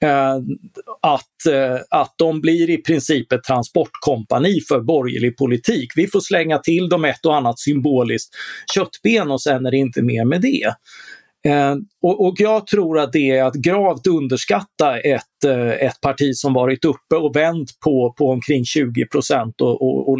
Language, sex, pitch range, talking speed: Swedish, male, 130-165 Hz, 170 wpm